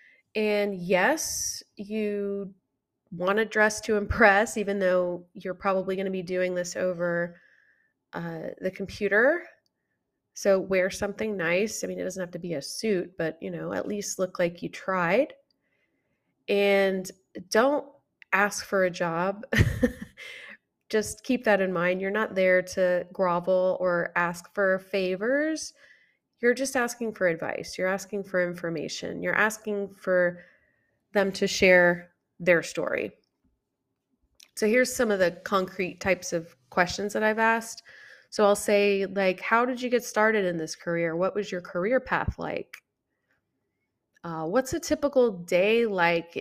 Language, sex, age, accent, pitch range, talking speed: English, female, 20-39, American, 180-215 Hz, 150 wpm